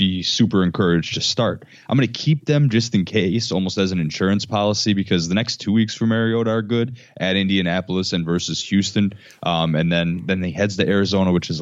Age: 20-39